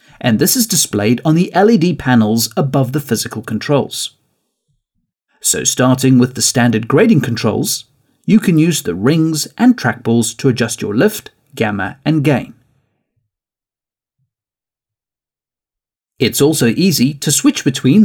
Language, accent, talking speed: English, British, 130 wpm